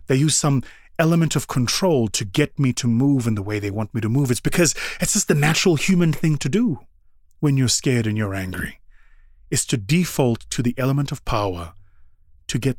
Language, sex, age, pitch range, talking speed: English, male, 30-49, 95-135 Hz, 210 wpm